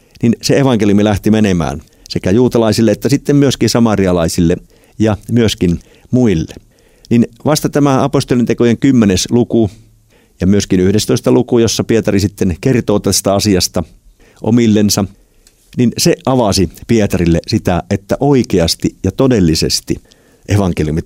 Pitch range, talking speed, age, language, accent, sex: 95-120 Hz, 115 wpm, 50-69, Finnish, native, male